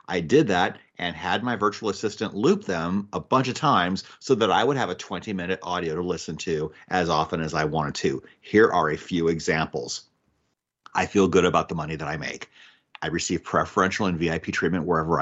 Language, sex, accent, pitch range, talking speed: English, male, American, 80-110 Hz, 210 wpm